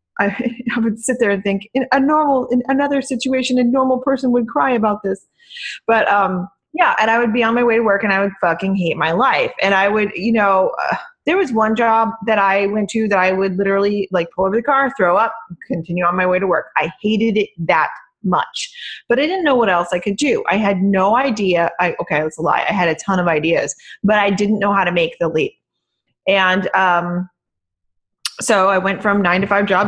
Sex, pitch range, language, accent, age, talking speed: female, 185-230 Hz, English, American, 20-39, 235 wpm